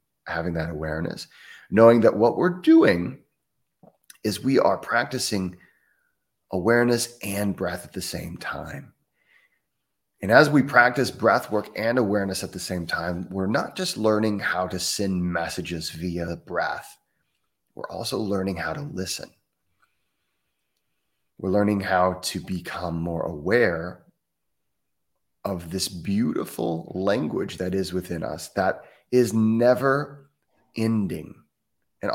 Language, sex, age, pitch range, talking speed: English, male, 30-49, 90-115 Hz, 125 wpm